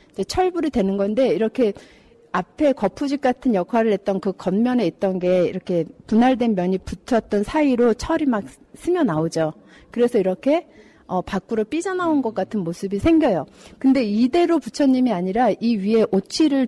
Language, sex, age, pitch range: Korean, female, 40-59, 195-255 Hz